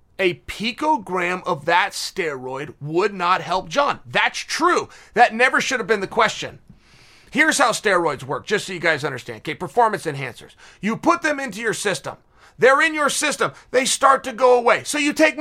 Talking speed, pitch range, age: 185 wpm, 195-270 Hz, 30-49